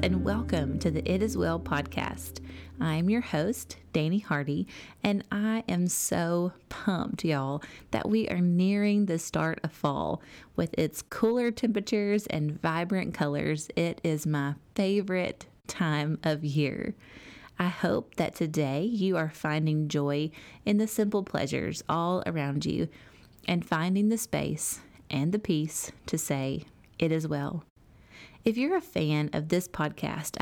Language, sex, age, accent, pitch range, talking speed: English, female, 30-49, American, 155-195 Hz, 150 wpm